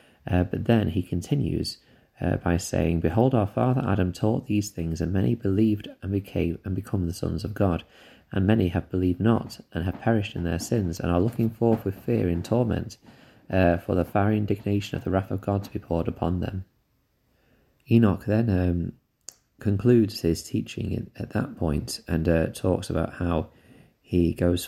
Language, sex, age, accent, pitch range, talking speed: English, male, 20-39, British, 85-105 Hz, 185 wpm